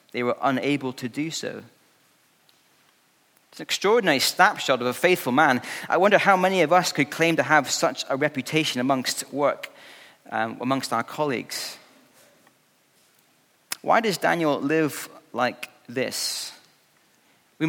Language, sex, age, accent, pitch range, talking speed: English, male, 30-49, British, 135-165 Hz, 135 wpm